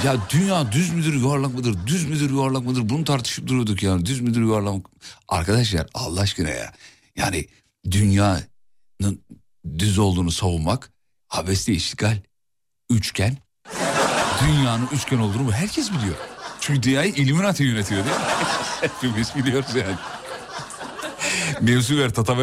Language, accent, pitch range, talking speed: Turkish, native, 100-150 Hz, 125 wpm